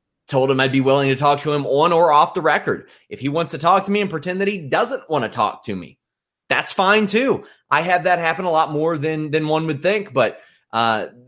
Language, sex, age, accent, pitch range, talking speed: English, male, 30-49, American, 120-160 Hz, 255 wpm